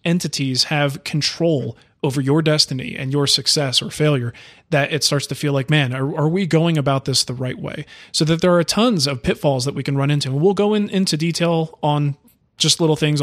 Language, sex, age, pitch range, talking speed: English, male, 20-39, 140-170 Hz, 220 wpm